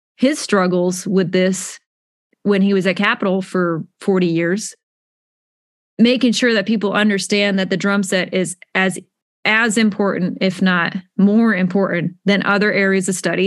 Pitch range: 190-225 Hz